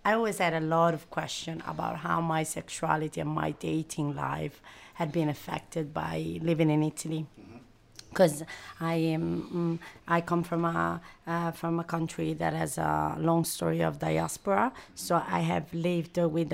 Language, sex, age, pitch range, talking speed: Italian, female, 30-49, 160-180 Hz, 165 wpm